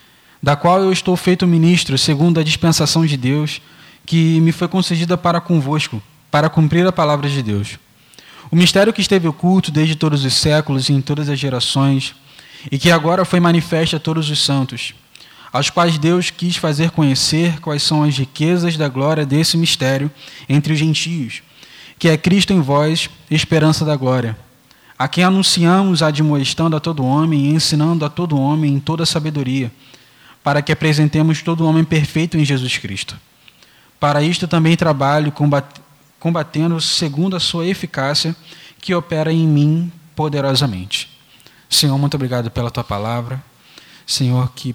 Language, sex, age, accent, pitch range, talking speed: Portuguese, male, 20-39, Brazilian, 125-160 Hz, 160 wpm